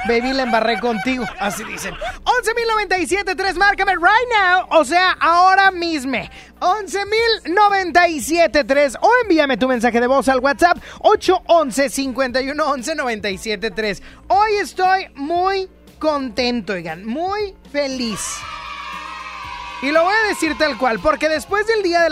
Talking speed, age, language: 120 wpm, 20-39, Spanish